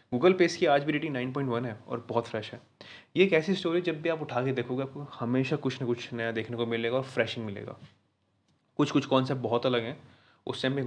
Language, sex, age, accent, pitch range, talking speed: Hindi, male, 20-39, native, 120-140 Hz, 245 wpm